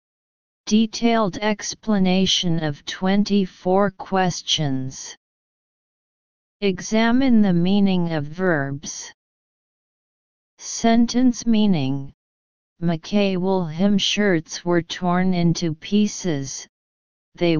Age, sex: 40-59, female